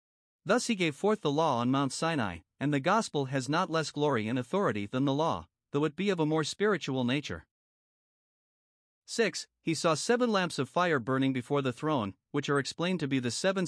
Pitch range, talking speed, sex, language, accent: 135-170 Hz, 205 wpm, male, English, American